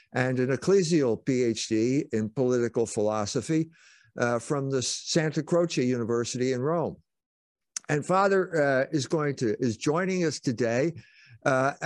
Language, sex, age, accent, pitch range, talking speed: English, male, 60-79, American, 120-165 Hz, 130 wpm